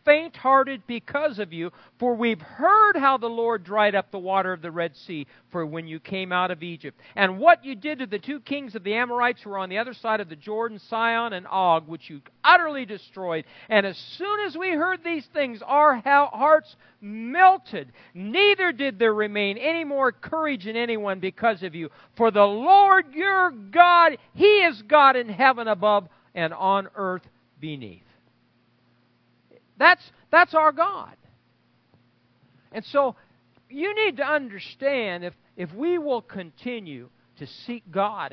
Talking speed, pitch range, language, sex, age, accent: 170 wpm, 175-275 Hz, English, male, 50-69, American